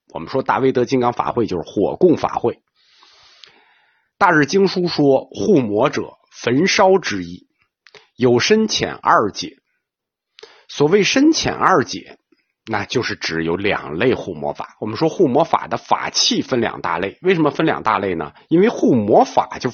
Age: 50-69